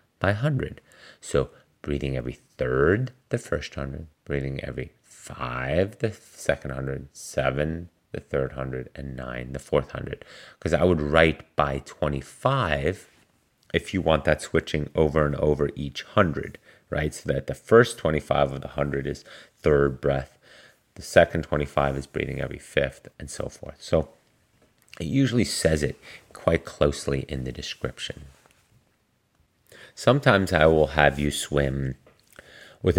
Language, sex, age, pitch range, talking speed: English, male, 30-49, 70-90 Hz, 140 wpm